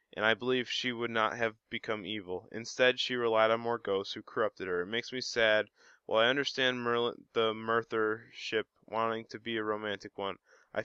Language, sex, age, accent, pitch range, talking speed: English, male, 20-39, American, 105-120 Hz, 195 wpm